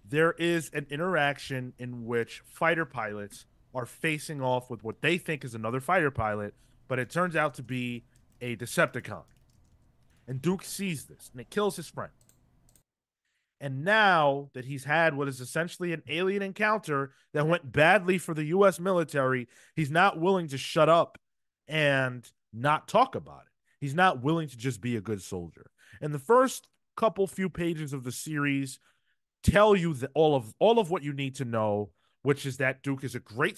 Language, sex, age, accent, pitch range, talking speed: English, male, 30-49, American, 125-170 Hz, 180 wpm